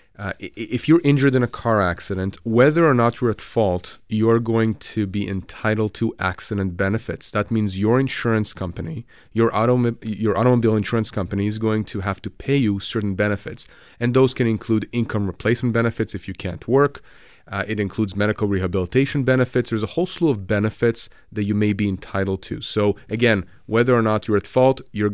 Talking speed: 190 wpm